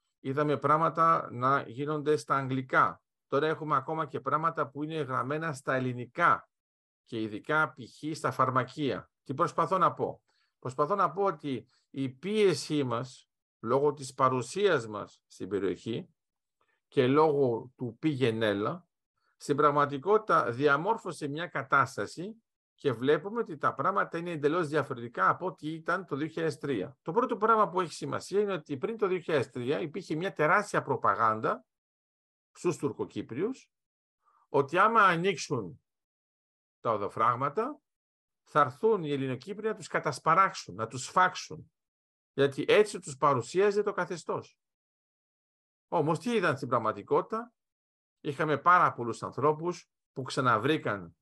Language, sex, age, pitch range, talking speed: Greek, male, 50-69, 135-180 Hz, 130 wpm